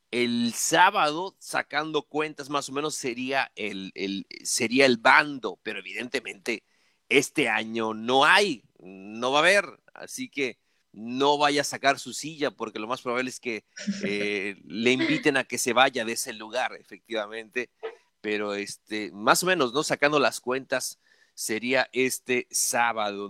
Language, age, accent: Spanish, 40-59, Mexican